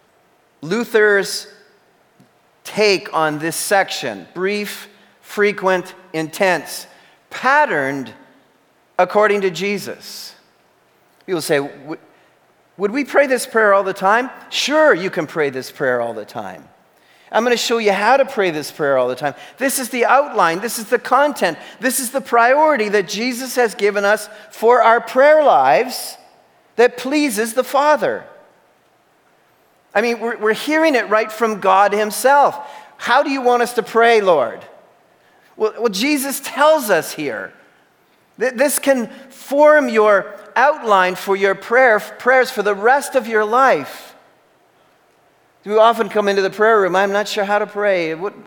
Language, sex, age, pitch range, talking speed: English, male, 40-59, 195-250 Hz, 150 wpm